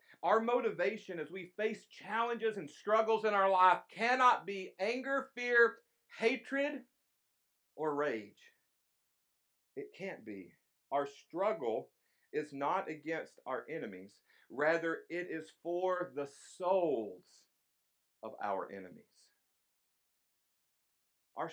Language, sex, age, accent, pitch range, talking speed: English, male, 50-69, American, 155-230 Hz, 105 wpm